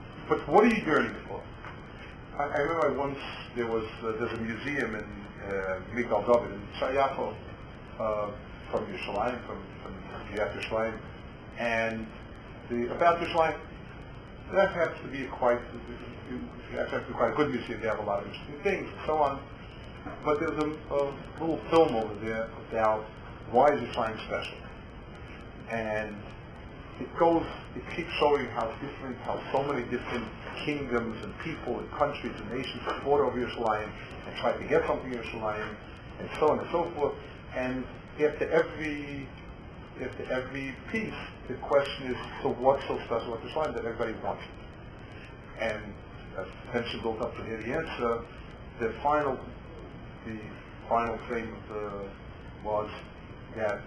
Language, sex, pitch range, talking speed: English, male, 110-135 Hz, 155 wpm